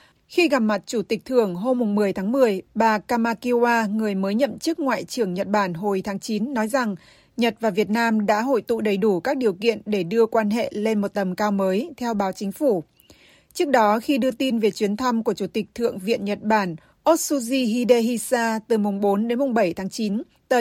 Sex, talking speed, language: female, 220 wpm, Vietnamese